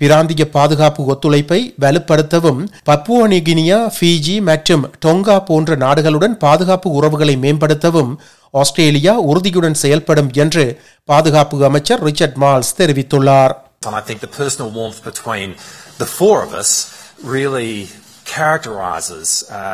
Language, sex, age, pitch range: Tamil, male, 30-49, 140-170 Hz